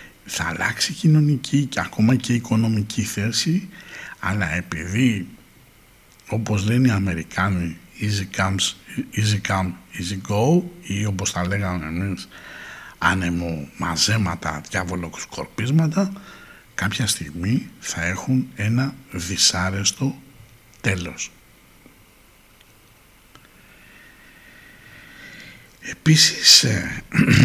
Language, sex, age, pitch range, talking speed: Greek, male, 60-79, 90-120 Hz, 80 wpm